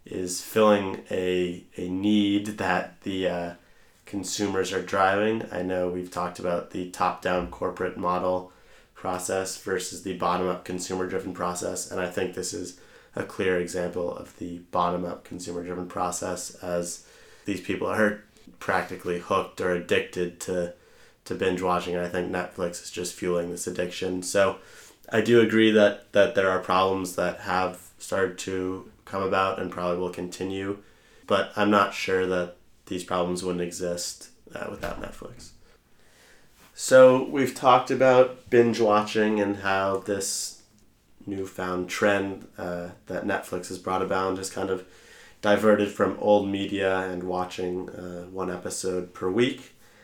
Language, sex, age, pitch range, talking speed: English, male, 20-39, 90-100 Hz, 145 wpm